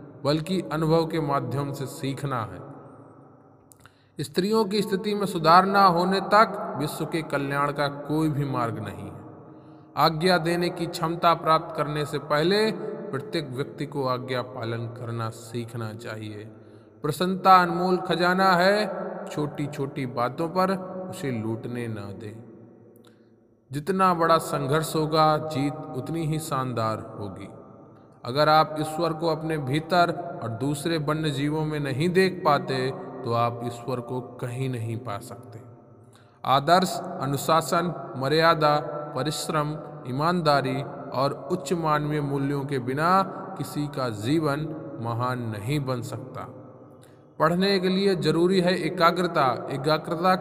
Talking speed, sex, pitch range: 130 wpm, male, 130-170 Hz